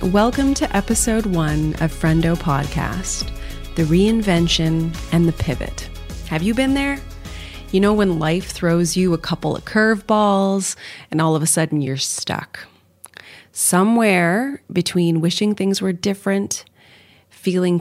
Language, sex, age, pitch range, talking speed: English, female, 30-49, 160-195 Hz, 135 wpm